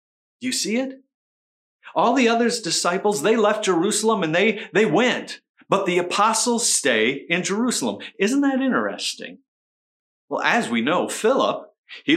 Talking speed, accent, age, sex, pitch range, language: 150 wpm, American, 50-69, male, 165-235 Hz, English